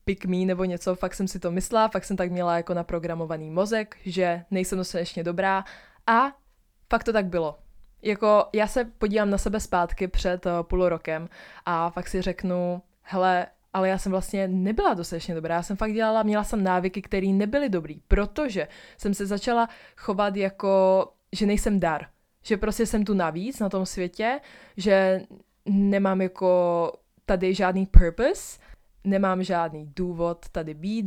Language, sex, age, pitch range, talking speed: English, female, 20-39, 175-210 Hz, 165 wpm